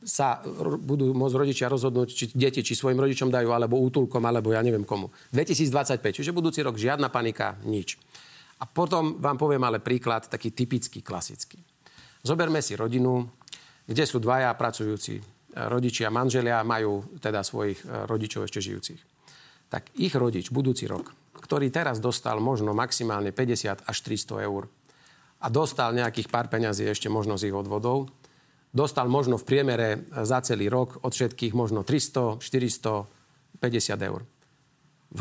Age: 40-59